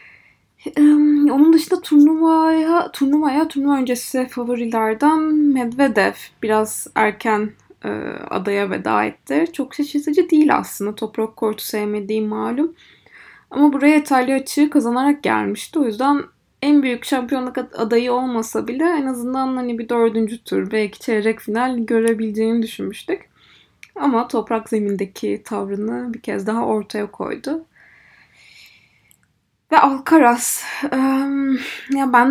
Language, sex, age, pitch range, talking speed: Turkish, female, 20-39, 220-285 Hz, 110 wpm